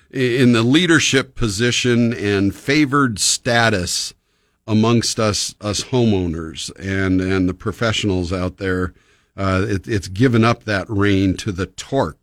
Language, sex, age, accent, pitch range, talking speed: English, male, 50-69, American, 95-115 Hz, 130 wpm